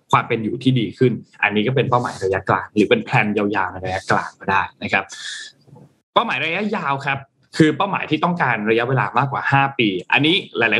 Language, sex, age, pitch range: Thai, male, 20-39, 120-145 Hz